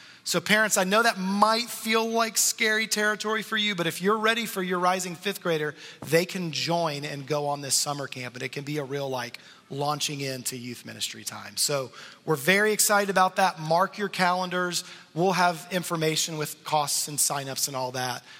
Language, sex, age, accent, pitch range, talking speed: English, male, 30-49, American, 145-190 Hz, 200 wpm